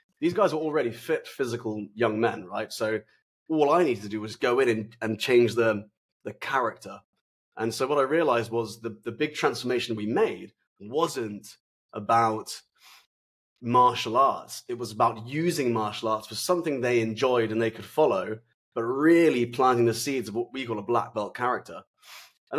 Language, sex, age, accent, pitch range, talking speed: English, male, 20-39, British, 110-135 Hz, 180 wpm